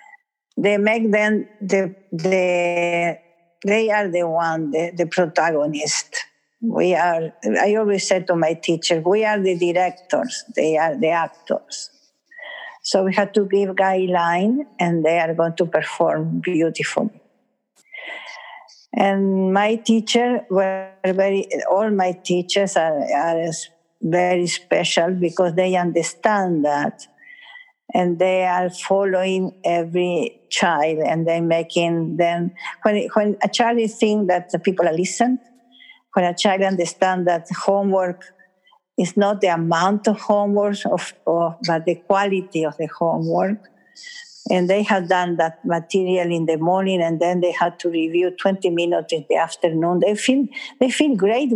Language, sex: English, female